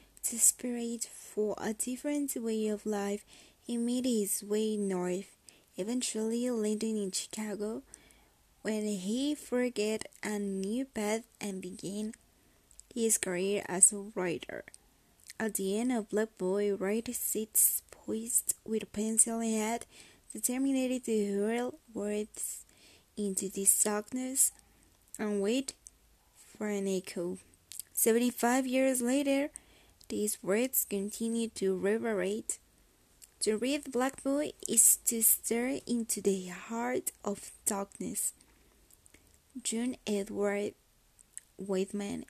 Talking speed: 110 wpm